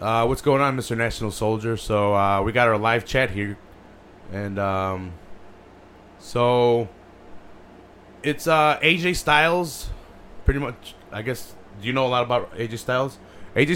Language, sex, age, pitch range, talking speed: English, male, 20-39, 100-130 Hz, 155 wpm